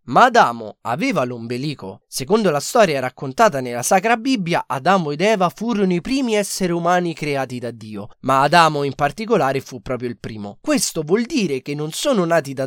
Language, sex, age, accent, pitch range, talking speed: Italian, male, 20-39, native, 135-200 Hz, 180 wpm